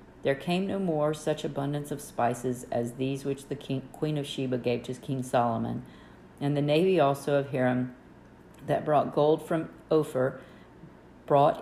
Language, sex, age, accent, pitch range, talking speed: English, female, 50-69, American, 125-150 Hz, 160 wpm